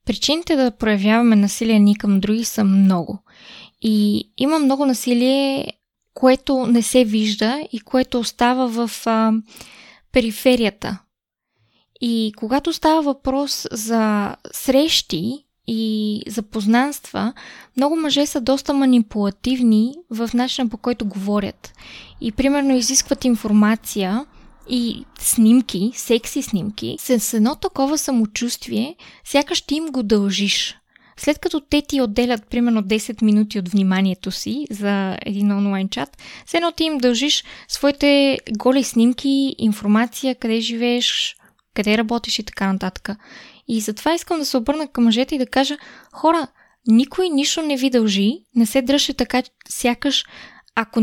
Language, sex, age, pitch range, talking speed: Bulgarian, female, 20-39, 220-275 Hz, 130 wpm